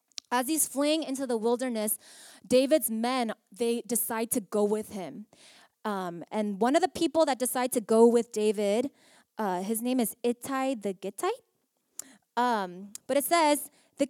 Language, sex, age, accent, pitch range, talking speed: English, female, 20-39, American, 215-275 Hz, 160 wpm